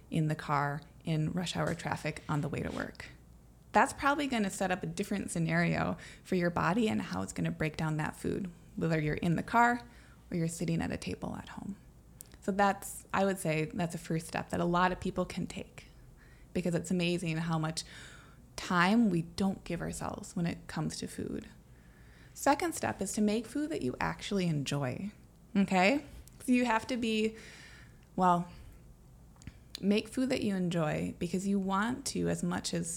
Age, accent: 20-39, American